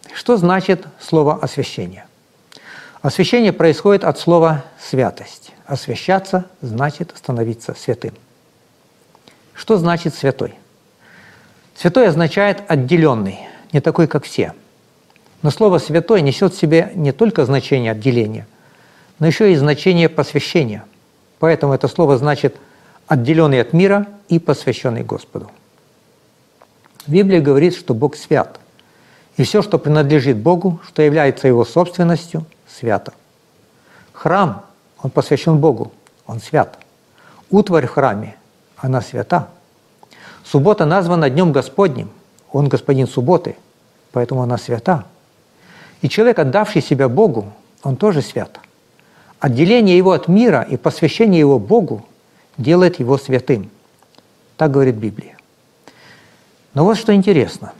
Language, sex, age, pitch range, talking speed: Russian, male, 50-69, 135-180 Hz, 115 wpm